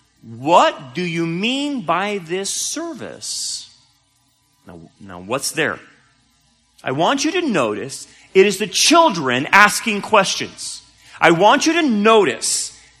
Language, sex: English, male